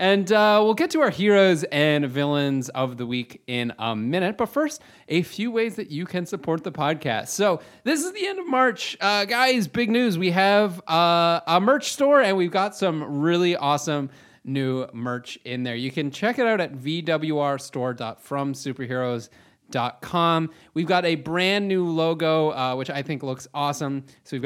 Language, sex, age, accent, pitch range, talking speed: English, male, 30-49, American, 135-190 Hz, 180 wpm